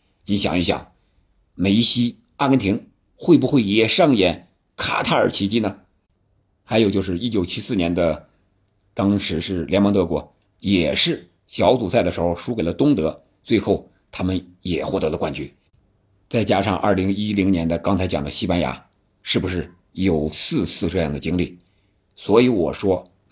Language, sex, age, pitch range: Chinese, male, 50-69, 90-110 Hz